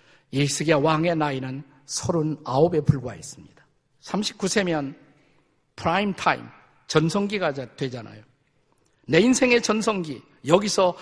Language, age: Korean, 50-69